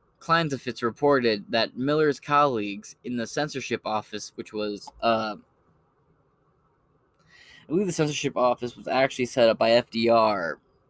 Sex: male